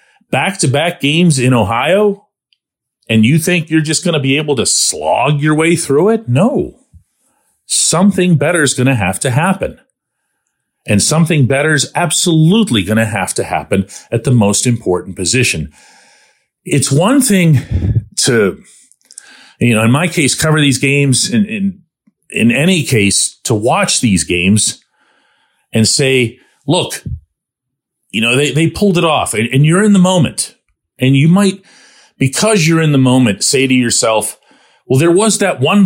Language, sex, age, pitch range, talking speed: English, male, 40-59, 120-175 Hz, 160 wpm